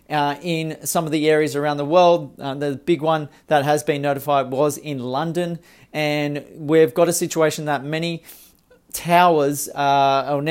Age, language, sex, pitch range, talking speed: 40-59, English, male, 145-170 Hz, 165 wpm